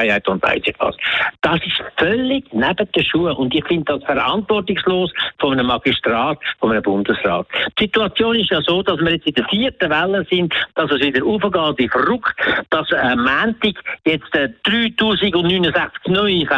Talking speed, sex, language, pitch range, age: 160 wpm, male, German, 160-210 Hz, 60-79